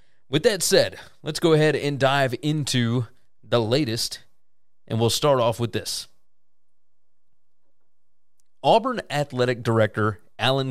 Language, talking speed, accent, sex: English, 120 wpm, American, male